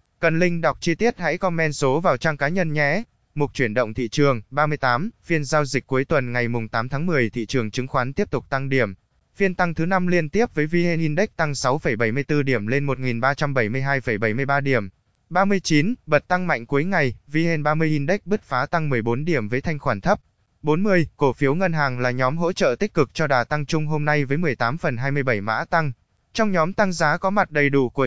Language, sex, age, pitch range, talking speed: Vietnamese, male, 20-39, 130-165 Hz, 215 wpm